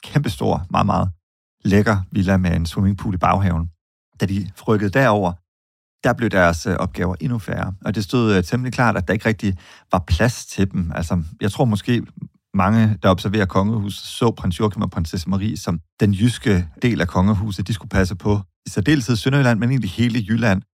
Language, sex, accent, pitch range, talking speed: Danish, male, native, 90-110 Hz, 185 wpm